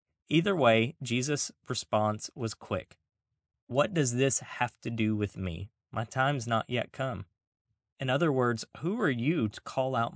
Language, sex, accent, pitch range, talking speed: English, male, American, 110-130 Hz, 165 wpm